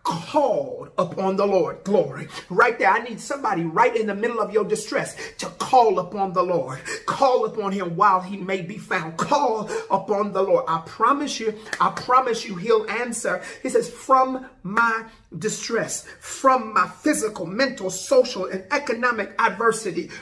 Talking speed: 165 wpm